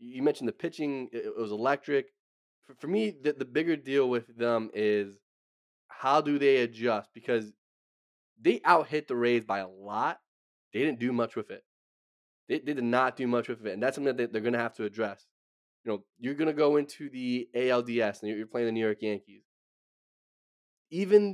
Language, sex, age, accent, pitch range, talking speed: English, male, 10-29, American, 110-135 Hz, 200 wpm